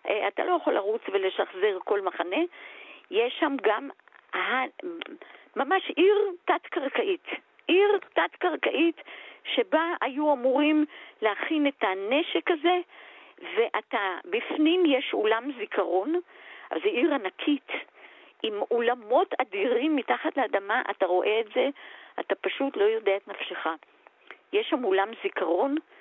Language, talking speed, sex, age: Hebrew, 115 wpm, female, 50-69